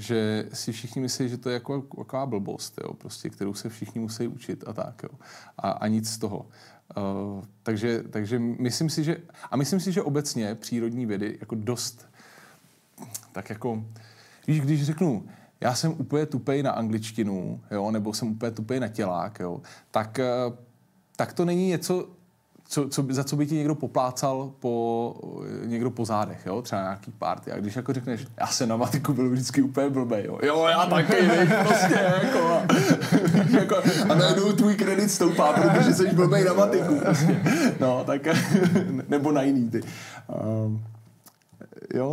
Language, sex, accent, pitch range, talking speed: Czech, male, native, 115-160 Hz, 170 wpm